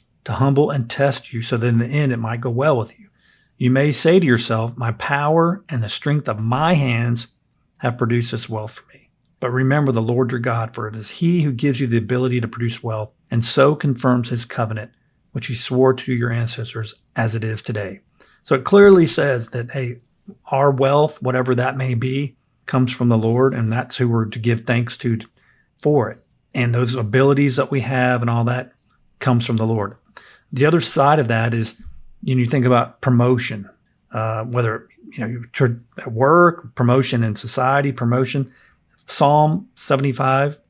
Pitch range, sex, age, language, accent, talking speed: 115-135 Hz, male, 40-59, English, American, 195 wpm